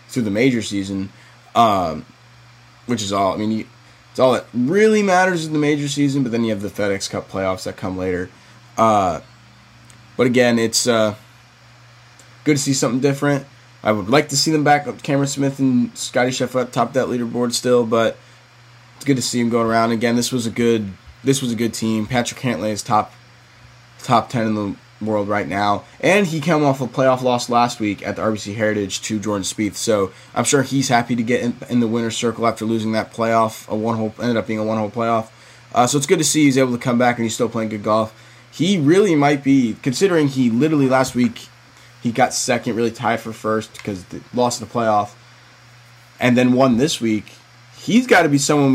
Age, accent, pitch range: 20-39, American, 110-130 Hz